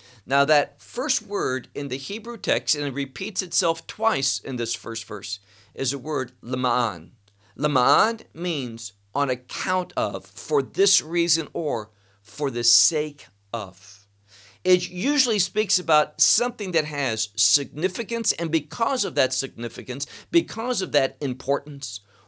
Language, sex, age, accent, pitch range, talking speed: English, male, 50-69, American, 115-175 Hz, 135 wpm